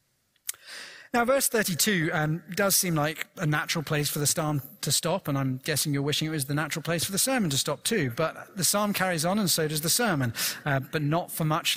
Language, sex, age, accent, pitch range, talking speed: English, male, 40-59, British, 135-180 Hz, 235 wpm